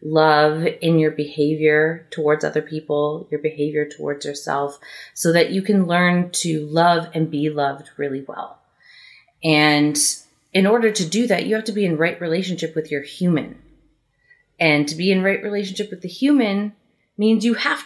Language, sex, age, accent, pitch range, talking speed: English, female, 30-49, American, 150-195 Hz, 170 wpm